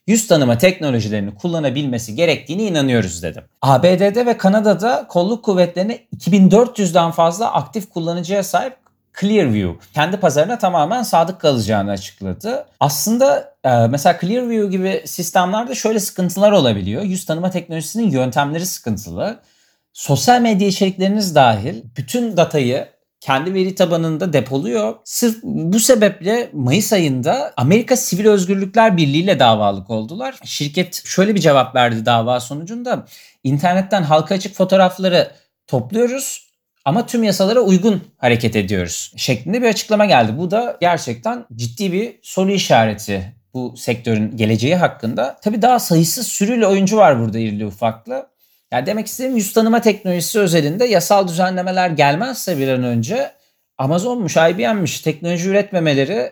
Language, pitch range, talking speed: Turkish, 135-210 Hz, 125 wpm